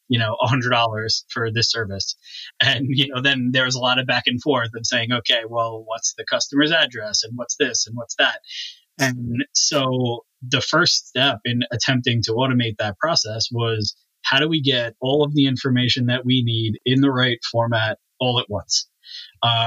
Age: 20-39